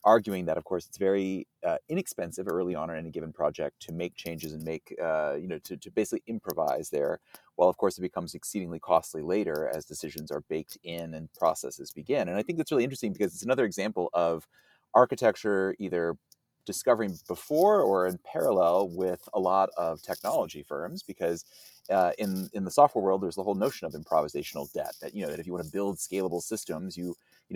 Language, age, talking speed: English, 30-49, 205 wpm